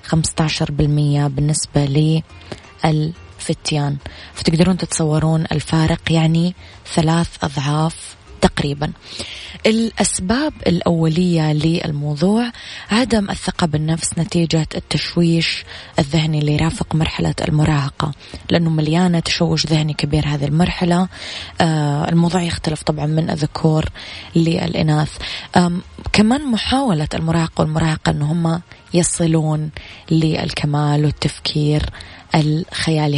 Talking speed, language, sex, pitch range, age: 80 wpm, Arabic, female, 150-170 Hz, 20-39